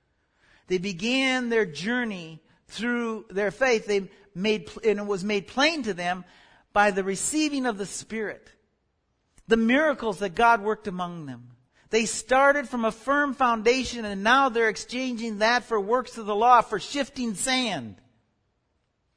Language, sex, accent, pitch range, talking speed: English, male, American, 210-270 Hz, 150 wpm